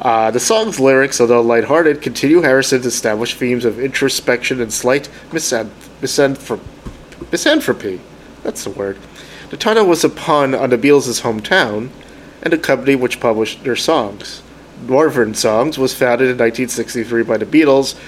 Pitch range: 115-140 Hz